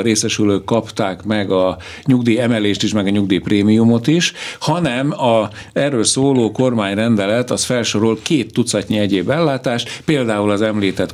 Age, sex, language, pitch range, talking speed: 60-79, male, Hungarian, 105-125 Hz, 140 wpm